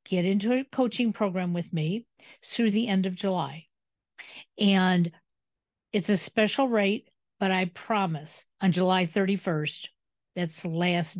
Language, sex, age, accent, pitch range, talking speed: English, female, 50-69, American, 170-230 Hz, 140 wpm